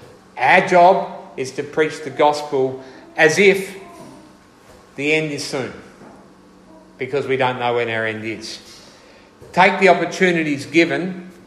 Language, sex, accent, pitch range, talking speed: English, male, Australian, 130-170 Hz, 130 wpm